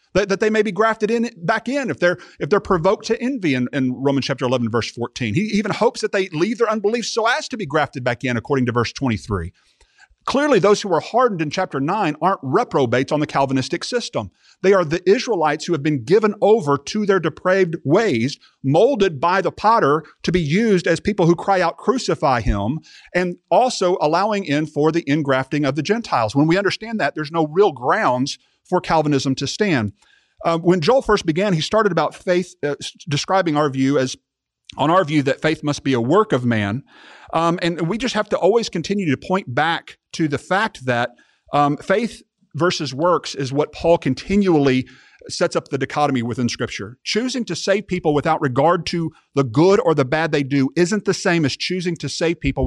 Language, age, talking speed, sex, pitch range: English, 50-69, 205 wpm, male, 140-195 Hz